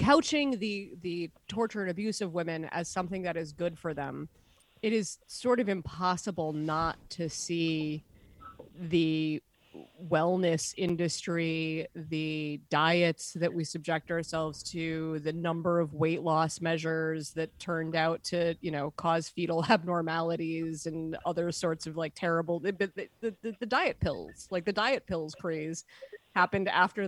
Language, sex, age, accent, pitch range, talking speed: English, female, 30-49, American, 165-220 Hz, 145 wpm